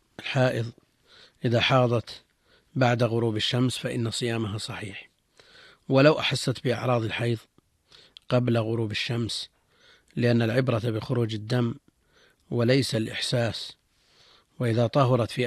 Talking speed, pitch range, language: 95 wpm, 115-130 Hz, Arabic